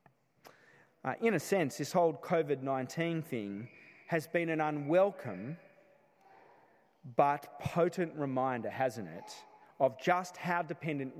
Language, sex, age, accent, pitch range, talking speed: English, male, 30-49, Australian, 140-185 Hz, 115 wpm